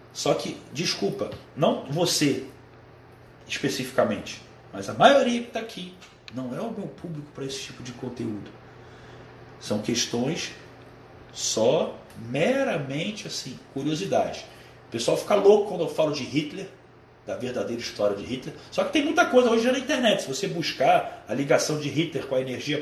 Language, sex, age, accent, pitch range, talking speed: Portuguese, male, 40-59, Brazilian, 135-225 Hz, 160 wpm